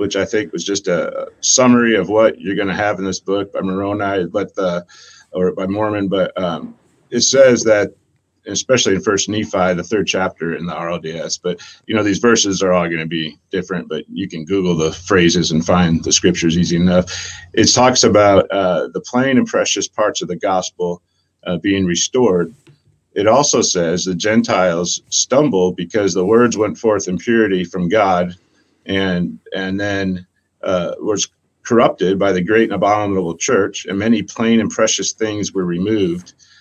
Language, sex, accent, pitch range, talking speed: English, male, American, 90-105 Hz, 180 wpm